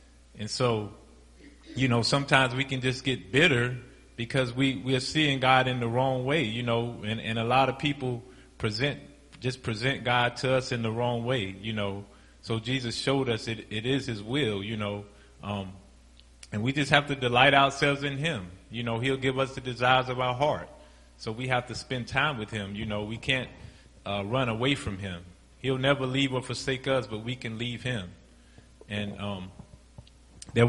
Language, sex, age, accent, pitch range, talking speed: English, male, 30-49, American, 105-130 Hz, 200 wpm